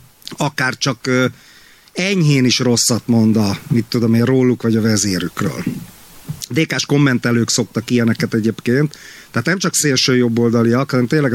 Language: Hungarian